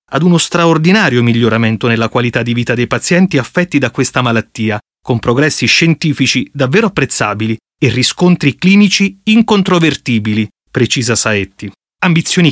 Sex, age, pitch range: male, 30-49, 120-160 Hz